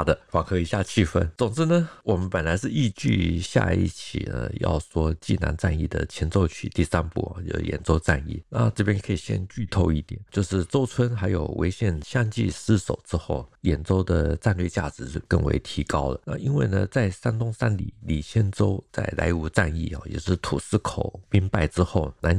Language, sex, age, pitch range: Chinese, male, 50-69, 85-105 Hz